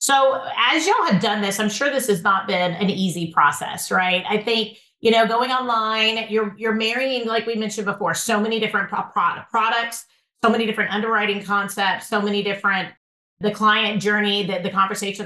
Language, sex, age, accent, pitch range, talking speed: English, female, 30-49, American, 190-225 Hz, 195 wpm